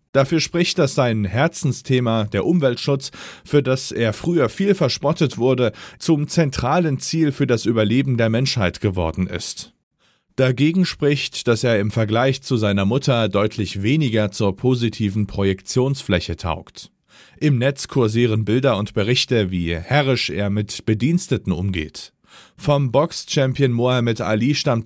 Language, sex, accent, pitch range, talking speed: German, male, German, 110-140 Hz, 135 wpm